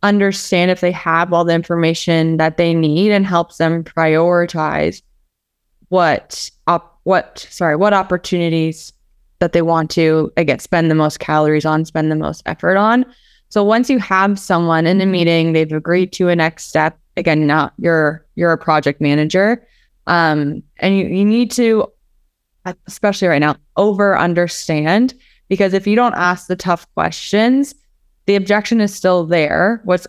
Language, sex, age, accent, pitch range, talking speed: English, female, 20-39, American, 155-185 Hz, 165 wpm